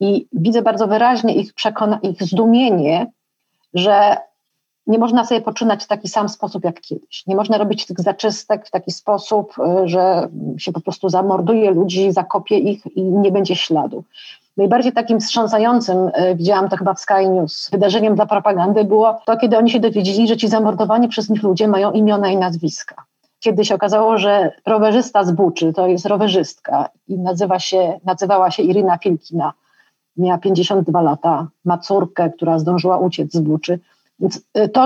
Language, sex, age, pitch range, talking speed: Polish, female, 30-49, 185-225 Hz, 165 wpm